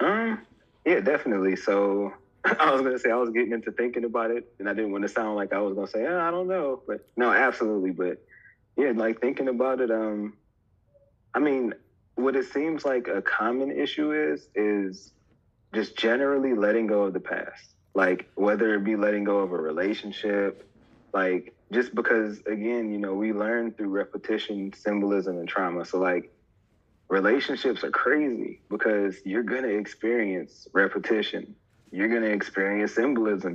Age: 20-39